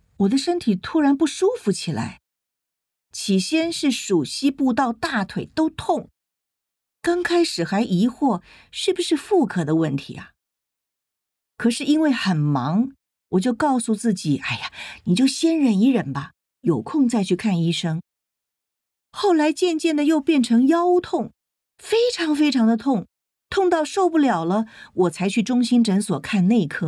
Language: Chinese